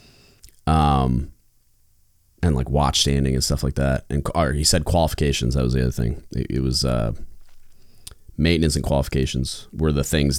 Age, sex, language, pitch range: 30-49, male, English, 70-85 Hz